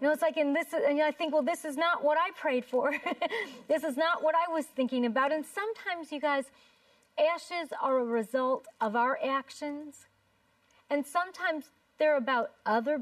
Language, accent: English, American